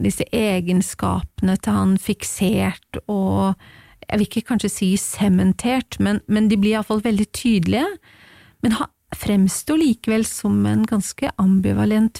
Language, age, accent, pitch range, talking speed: English, 30-49, Swedish, 195-235 Hz, 135 wpm